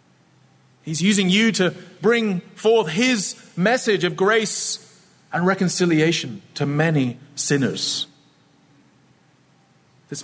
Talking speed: 95 wpm